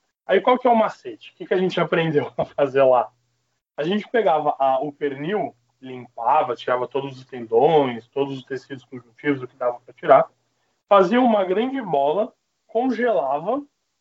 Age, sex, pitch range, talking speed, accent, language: 20-39, male, 145-205 Hz, 165 wpm, Brazilian, Portuguese